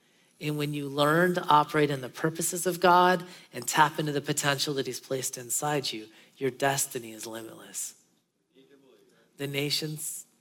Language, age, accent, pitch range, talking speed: English, 40-59, American, 130-175 Hz, 155 wpm